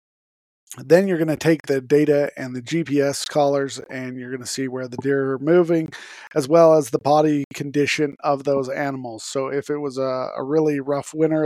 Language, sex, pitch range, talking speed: English, male, 125-145 Hz, 205 wpm